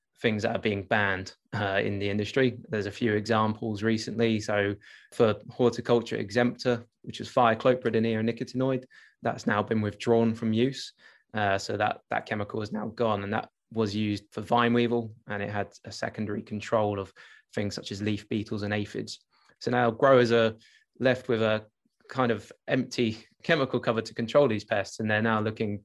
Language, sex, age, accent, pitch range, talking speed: English, male, 20-39, British, 105-120 Hz, 180 wpm